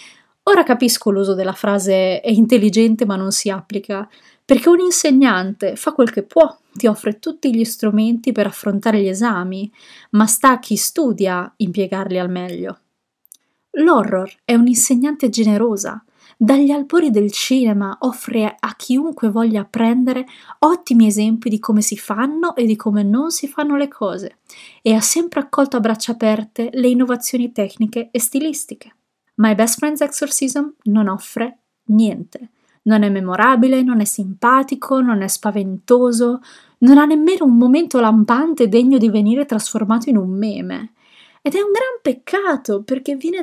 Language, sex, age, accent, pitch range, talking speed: Italian, female, 20-39, native, 210-265 Hz, 150 wpm